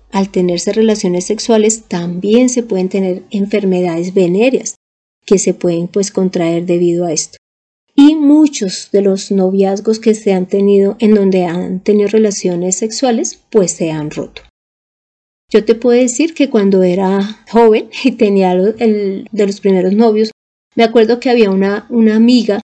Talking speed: 155 wpm